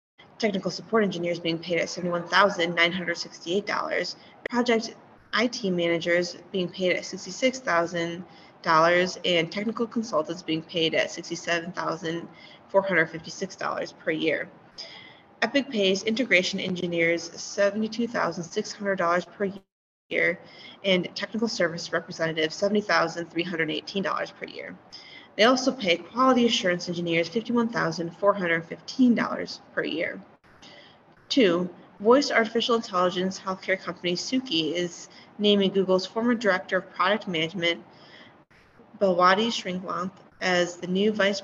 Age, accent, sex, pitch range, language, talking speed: 20-39, American, female, 175-215 Hz, English, 95 wpm